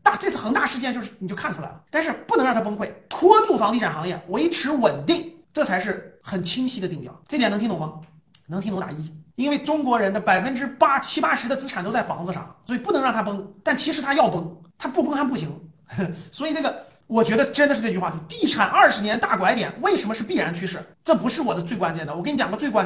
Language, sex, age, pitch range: Chinese, male, 30-49, 180-290 Hz